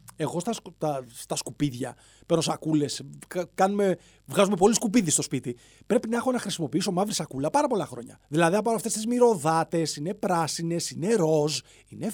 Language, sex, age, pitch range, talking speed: Greek, male, 30-49, 150-220 Hz, 160 wpm